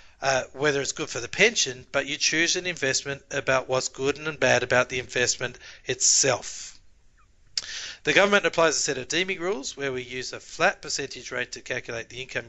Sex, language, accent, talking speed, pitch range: male, English, Australian, 190 wpm, 125-150 Hz